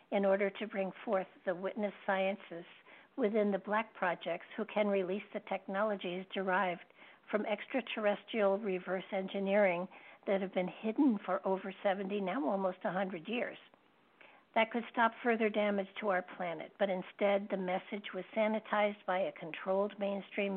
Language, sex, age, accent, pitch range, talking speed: English, female, 60-79, American, 190-215 Hz, 150 wpm